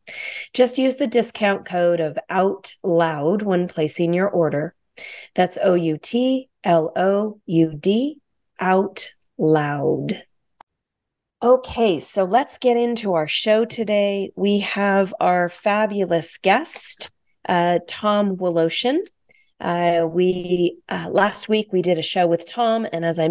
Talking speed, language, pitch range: 135 wpm, English, 165-205 Hz